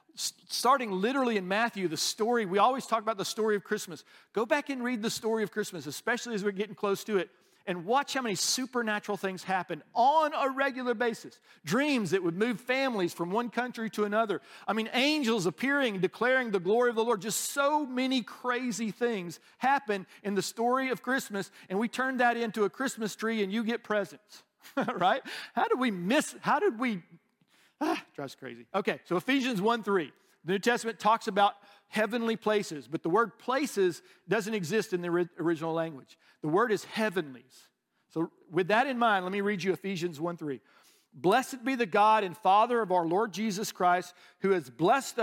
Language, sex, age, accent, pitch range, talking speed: English, male, 50-69, American, 185-245 Hz, 190 wpm